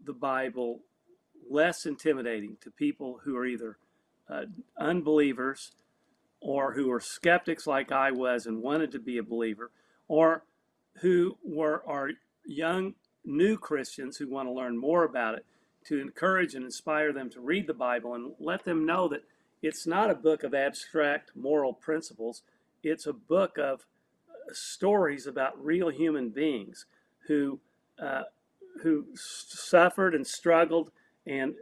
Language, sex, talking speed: English, male, 145 wpm